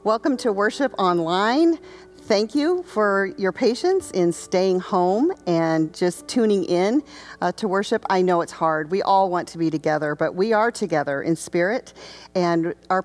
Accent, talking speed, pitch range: American, 170 wpm, 165-225 Hz